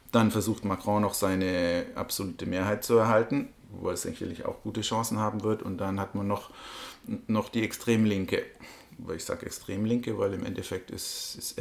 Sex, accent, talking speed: male, German, 170 wpm